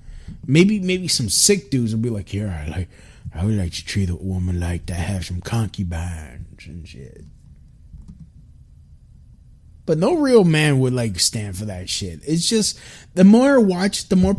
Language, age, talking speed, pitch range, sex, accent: English, 30-49, 175 wpm, 105-175 Hz, male, American